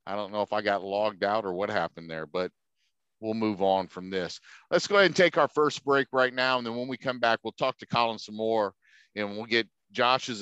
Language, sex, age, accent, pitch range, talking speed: English, male, 50-69, American, 95-125 Hz, 255 wpm